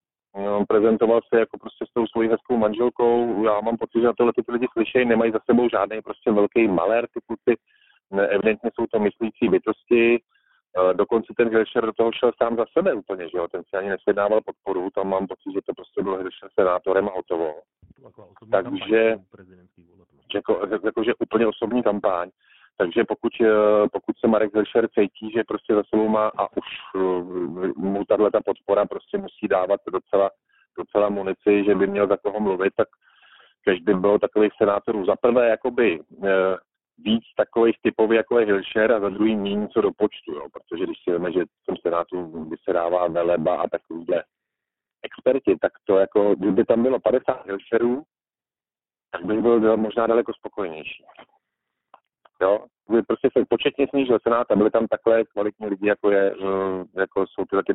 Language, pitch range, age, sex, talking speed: Slovak, 95-115 Hz, 40-59, male, 170 wpm